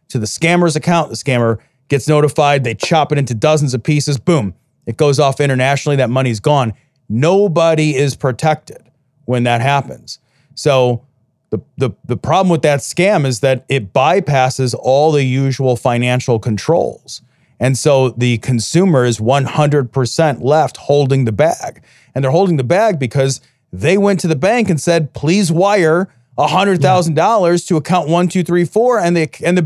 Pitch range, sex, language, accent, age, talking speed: 130-165 Hz, male, English, American, 30-49, 155 wpm